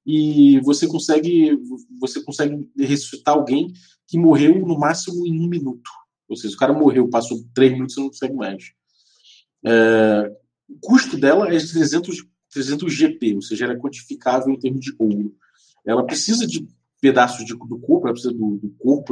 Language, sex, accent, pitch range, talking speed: Portuguese, male, Brazilian, 115-165 Hz, 175 wpm